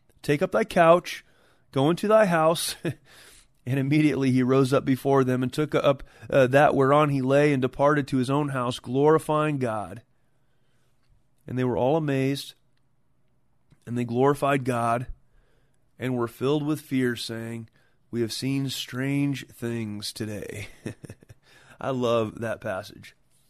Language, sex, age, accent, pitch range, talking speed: English, male, 30-49, American, 130-170 Hz, 145 wpm